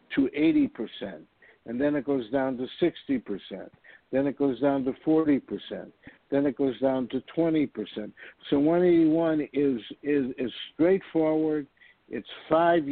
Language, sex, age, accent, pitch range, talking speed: English, male, 60-79, American, 130-165 Hz, 130 wpm